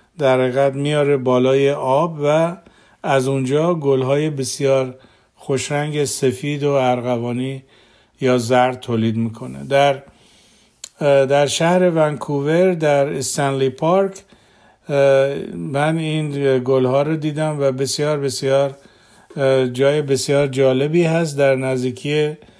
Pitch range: 130-150 Hz